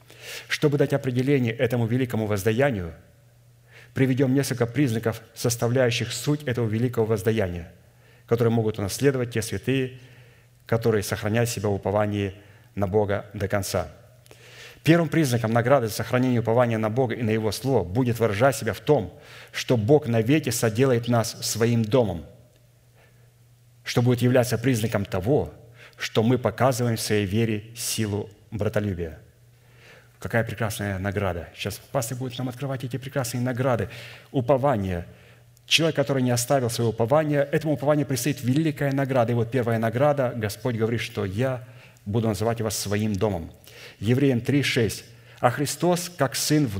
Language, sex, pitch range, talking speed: Russian, male, 110-135 Hz, 140 wpm